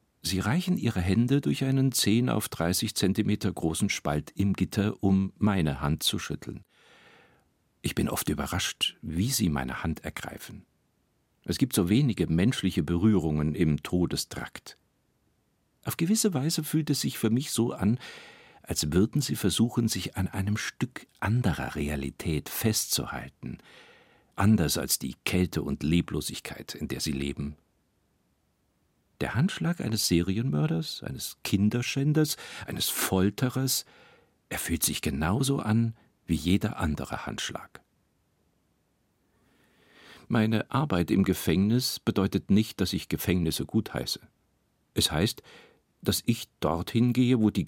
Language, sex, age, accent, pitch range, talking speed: German, male, 60-79, German, 85-120 Hz, 130 wpm